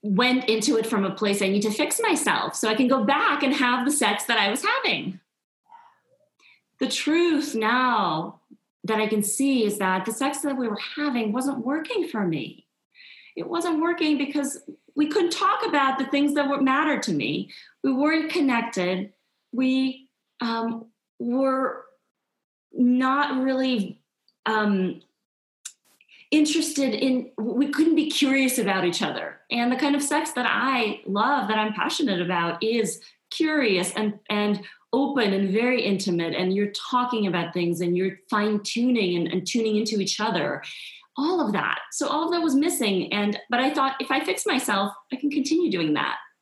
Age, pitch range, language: 30-49, 205-275 Hz, English